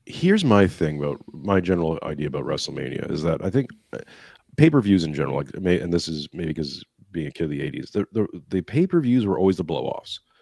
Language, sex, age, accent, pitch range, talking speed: English, male, 30-49, American, 80-95 Hz, 215 wpm